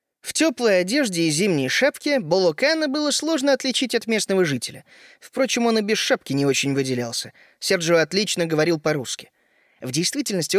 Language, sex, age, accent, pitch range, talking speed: Russian, male, 20-39, native, 180-245 Hz, 155 wpm